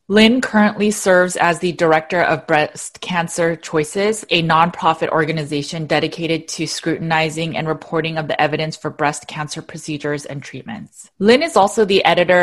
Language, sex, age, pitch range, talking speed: English, female, 20-39, 155-180 Hz, 155 wpm